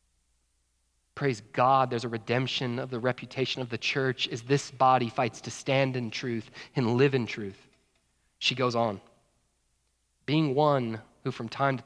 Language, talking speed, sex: English, 160 wpm, male